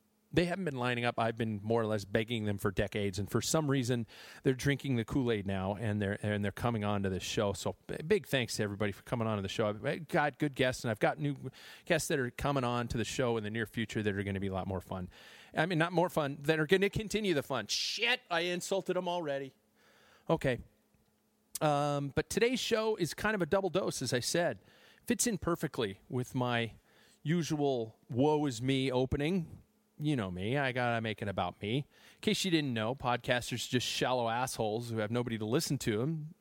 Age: 30-49